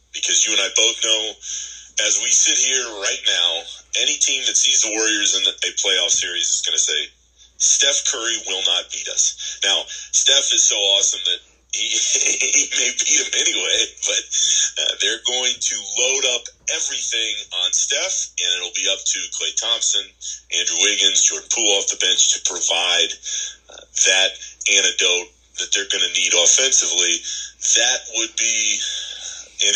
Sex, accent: male, American